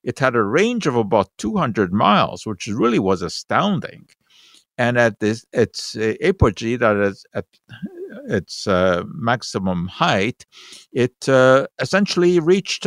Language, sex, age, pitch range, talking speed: English, male, 60-79, 100-130 Hz, 130 wpm